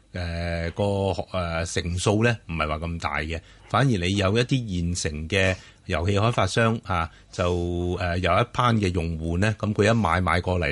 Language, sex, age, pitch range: Chinese, male, 30-49, 90-120 Hz